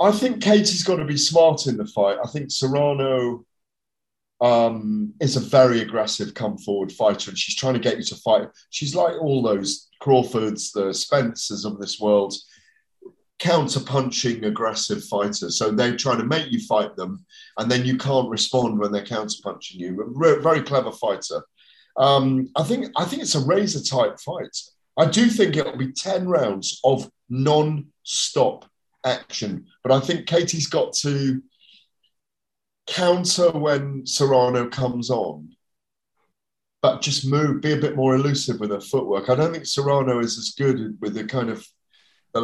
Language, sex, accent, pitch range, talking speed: English, male, British, 110-150 Hz, 165 wpm